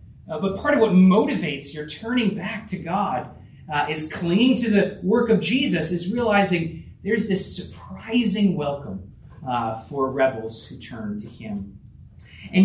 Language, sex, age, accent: English, male, 30-49, American